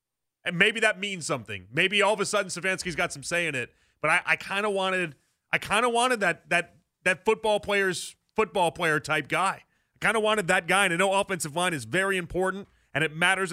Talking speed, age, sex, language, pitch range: 220 wpm, 30-49, male, English, 155-190 Hz